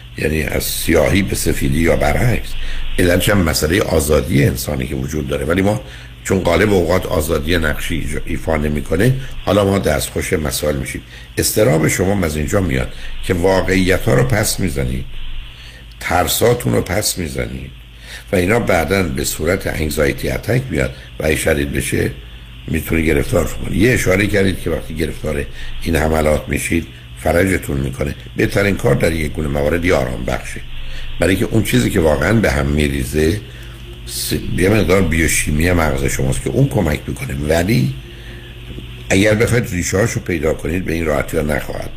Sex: male